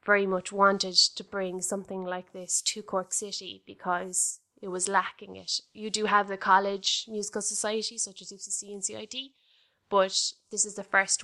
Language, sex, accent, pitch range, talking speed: English, female, Irish, 185-200 Hz, 175 wpm